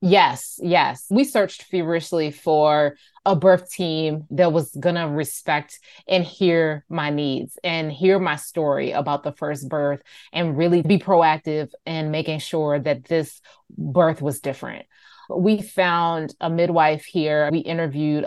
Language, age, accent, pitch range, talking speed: English, 20-39, American, 150-180 Hz, 150 wpm